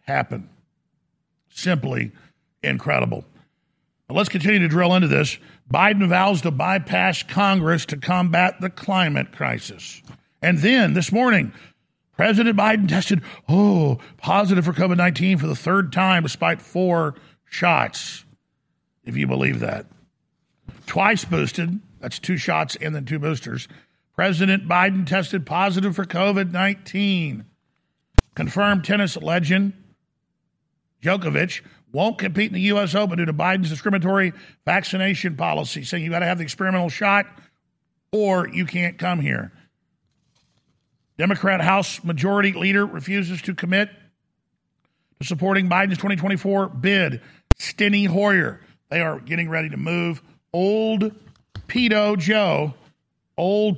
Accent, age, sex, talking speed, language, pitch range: American, 50-69, male, 125 wpm, English, 170-200 Hz